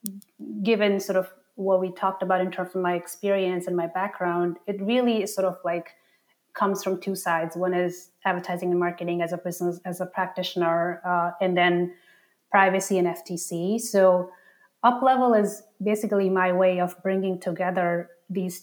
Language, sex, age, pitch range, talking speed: English, female, 30-49, 175-200 Hz, 165 wpm